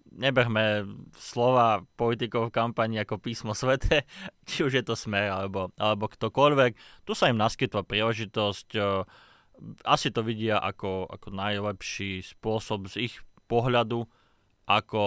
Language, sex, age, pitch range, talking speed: Slovak, male, 20-39, 100-115 Hz, 125 wpm